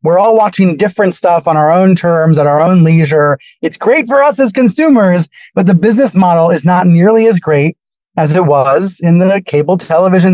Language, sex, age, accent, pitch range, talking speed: English, male, 20-39, American, 155-200 Hz, 205 wpm